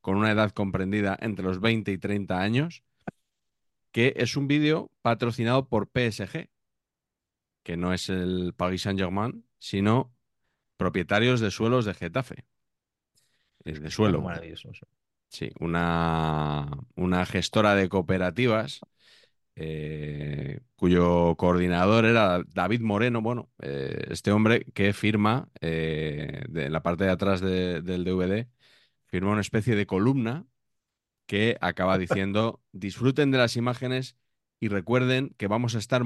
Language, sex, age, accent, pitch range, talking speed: Spanish, male, 30-49, Spanish, 90-120 Hz, 125 wpm